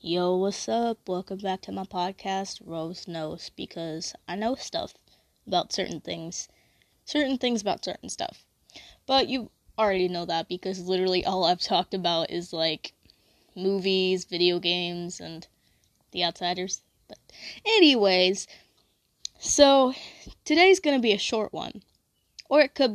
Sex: female